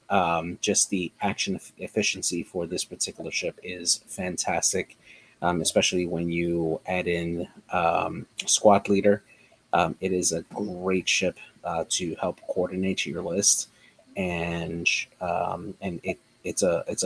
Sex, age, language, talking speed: male, 30-49, English, 140 wpm